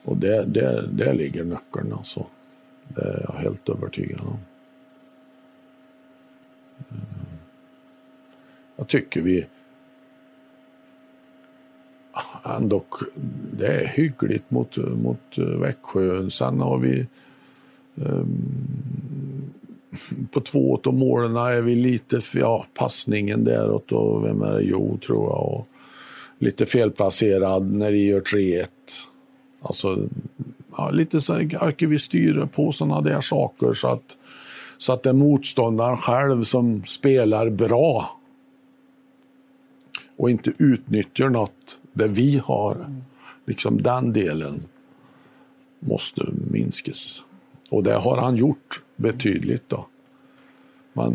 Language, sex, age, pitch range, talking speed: Swedish, male, 50-69, 105-145 Hz, 110 wpm